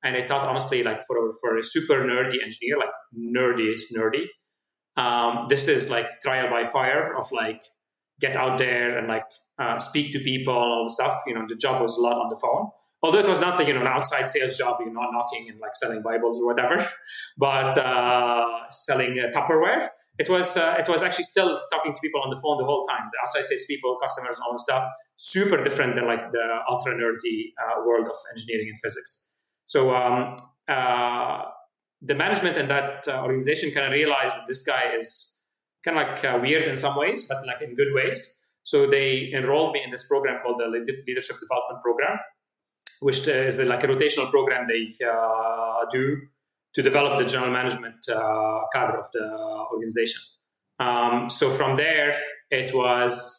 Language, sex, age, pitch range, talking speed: English, male, 30-49, 120-150 Hz, 200 wpm